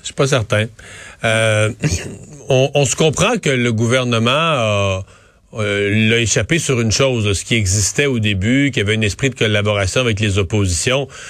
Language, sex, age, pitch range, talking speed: French, male, 40-59, 110-145 Hz, 180 wpm